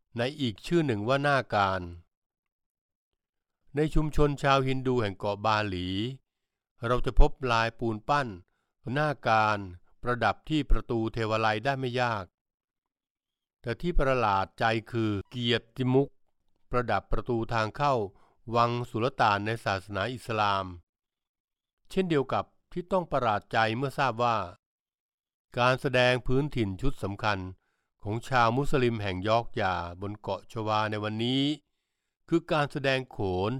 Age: 60-79